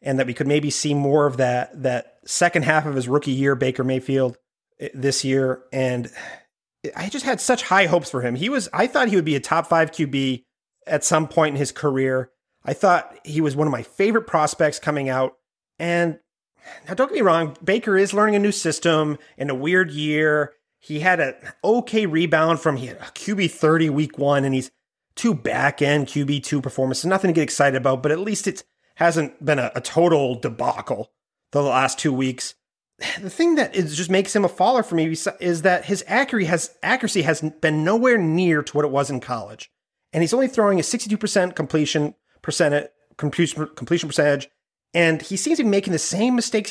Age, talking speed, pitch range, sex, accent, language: 30-49, 205 wpm, 140-190 Hz, male, American, English